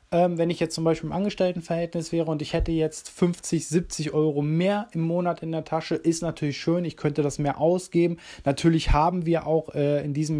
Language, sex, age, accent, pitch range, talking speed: German, male, 20-39, German, 150-175 Hz, 210 wpm